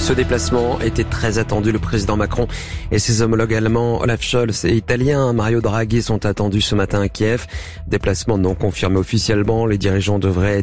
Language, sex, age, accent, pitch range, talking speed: French, male, 40-59, French, 90-110 Hz, 175 wpm